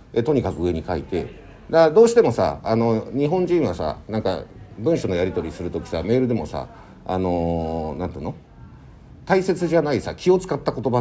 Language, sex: Japanese, male